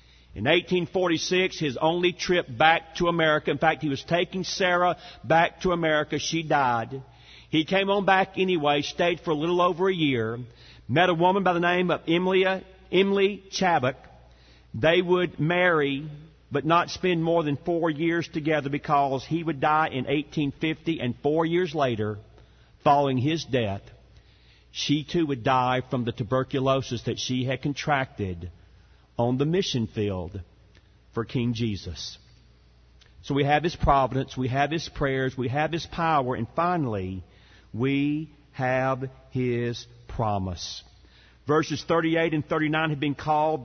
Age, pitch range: 50-69, 125-170 Hz